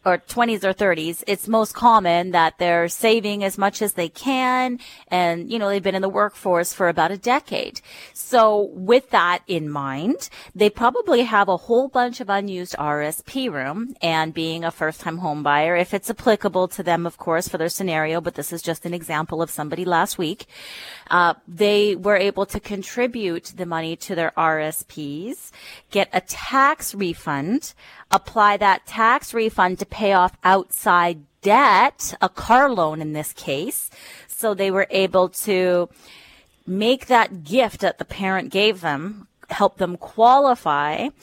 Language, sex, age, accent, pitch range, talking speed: English, female, 30-49, American, 165-210 Hz, 165 wpm